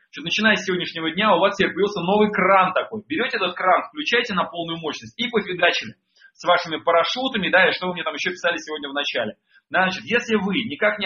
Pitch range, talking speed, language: 160-205 Hz, 205 wpm, Russian